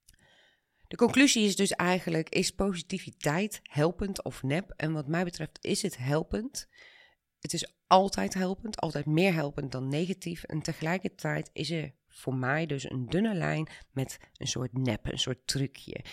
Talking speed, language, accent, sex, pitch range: 160 wpm, Dutch, Dutch, female, 135-170 Hz